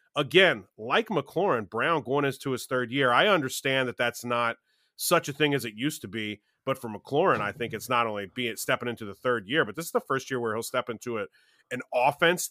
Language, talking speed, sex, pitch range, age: English, 230 wpm, male, 115-155 Hz, 30-49